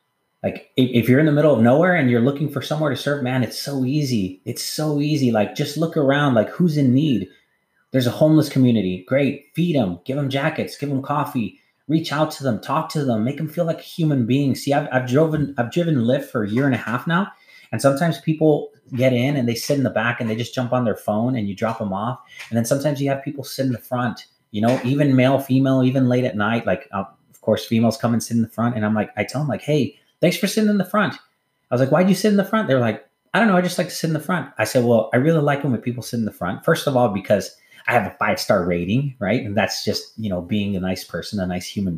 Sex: male